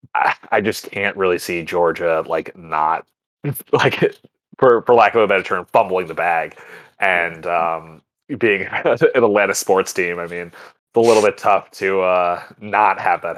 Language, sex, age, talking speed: English, male, 20-39, 170 wpm